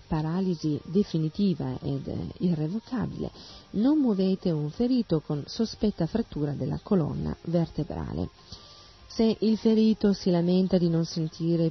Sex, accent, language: female, native, Italian